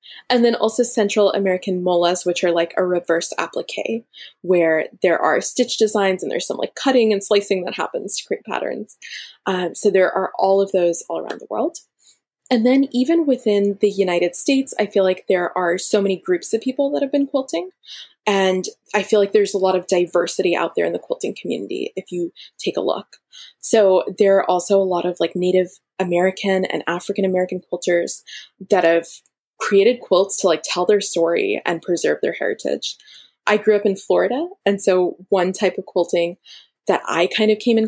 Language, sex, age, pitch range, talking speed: English, female, 10-29, 175-215 Hz, 200 wpm